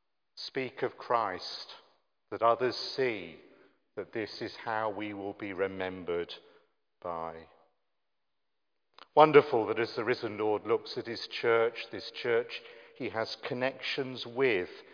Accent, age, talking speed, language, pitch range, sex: British, 50-69, 125 wpm, English, 105-155 Hz, male